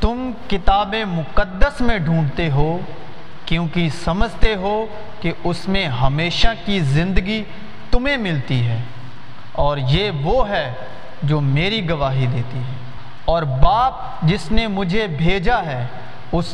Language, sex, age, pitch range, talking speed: Urdu, male, 40-59, 135-215 Hz, 125 wpm